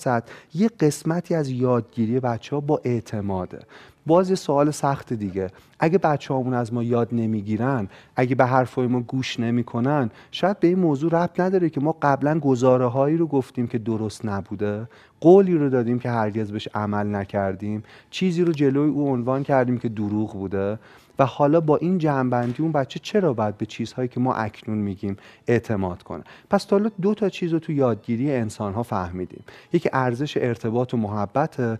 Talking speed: 170 wpm